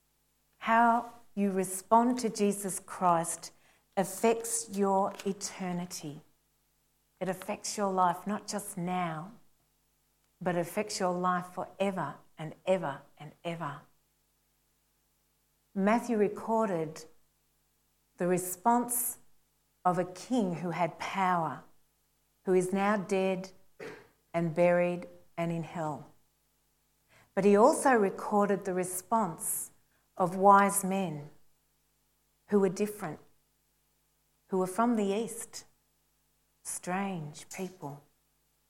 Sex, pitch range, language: female, 175-205 Hz, English